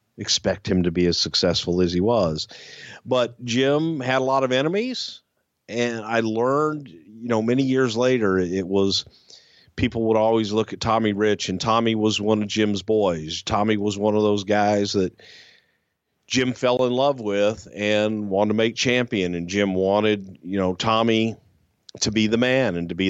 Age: 50-69